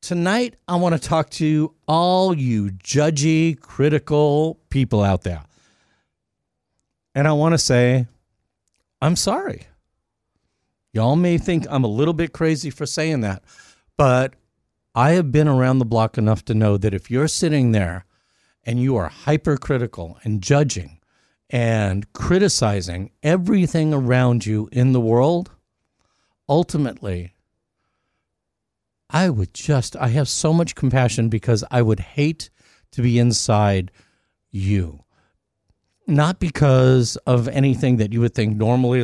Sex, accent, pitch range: male, American, 110-155 Hz